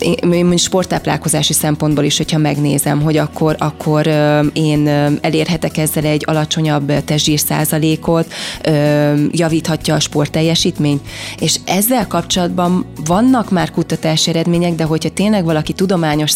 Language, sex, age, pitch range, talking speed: Hungarian, female, 20-39, 150-170 Hz, 115 wpm